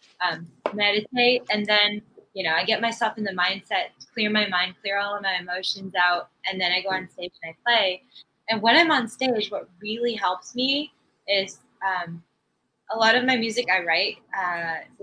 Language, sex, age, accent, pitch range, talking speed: English, female, 20-39, American, 180-220 Hz, 195 wpm